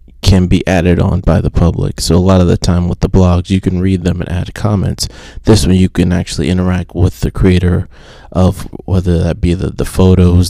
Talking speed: 225 wpm